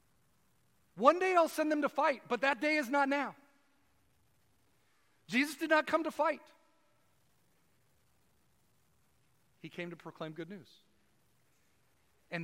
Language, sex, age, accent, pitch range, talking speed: English, male, 40-59, American, 205-305 Hz, 125 wpm